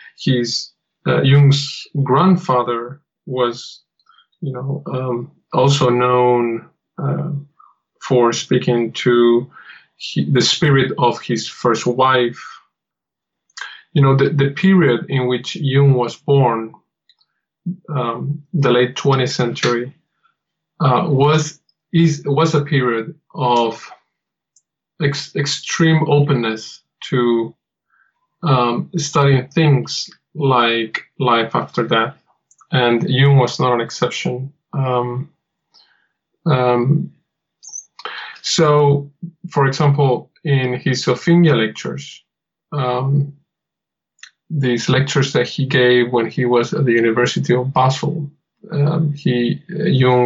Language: English